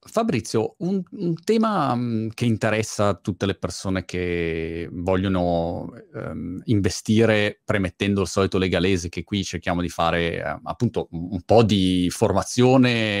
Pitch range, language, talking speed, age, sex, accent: 90-110 Hz, Italian, 130 wpm, 30-49, male, native